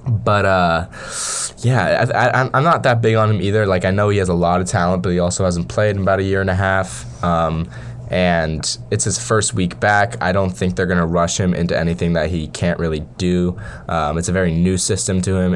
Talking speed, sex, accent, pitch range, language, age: 235 wpm, male, American, 85-100 Hz, English, 20-39